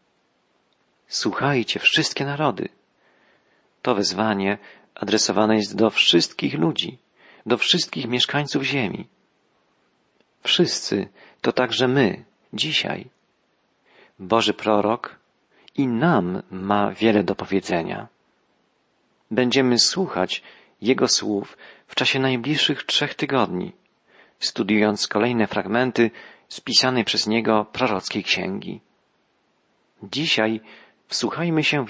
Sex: male